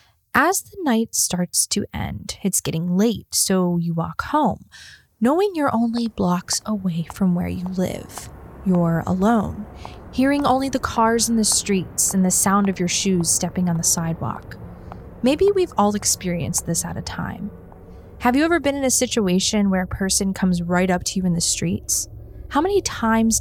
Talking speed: 180 wpm